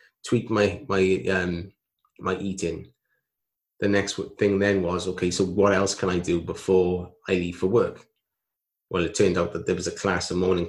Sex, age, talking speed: male, 20-39, 190 wpm